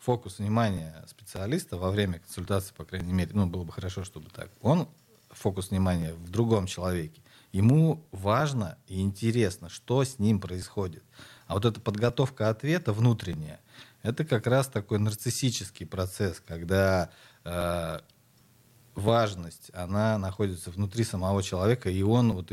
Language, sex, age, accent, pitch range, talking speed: Russian, male, 40-59, native, 95-120 Hz, 140 wpm